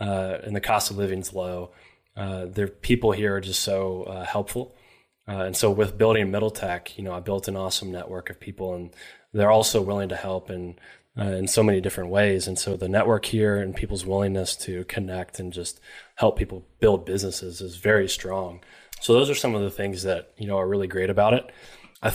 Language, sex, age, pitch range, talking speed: English, male, 20-39, 95-105 Hz, 220 wpm